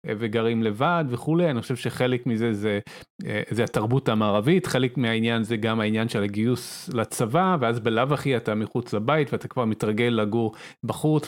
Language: Hebrew